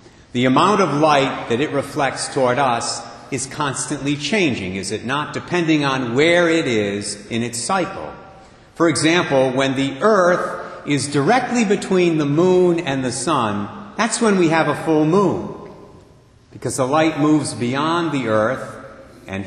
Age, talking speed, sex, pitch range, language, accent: 50-69, 155 wpm, male, 120-175 Hz, English, American